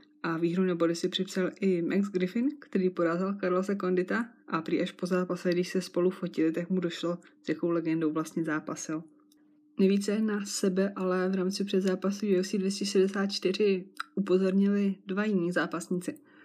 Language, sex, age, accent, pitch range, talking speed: Czech, female, 20-39, native, 175-200 Hz, 155 wpm